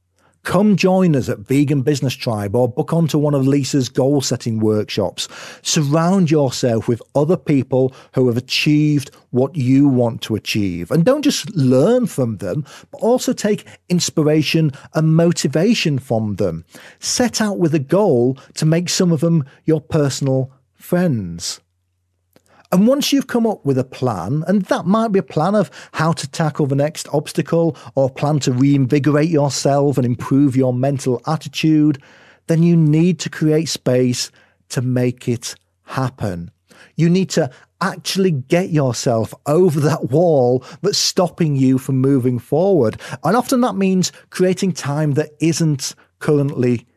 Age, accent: 40-59, British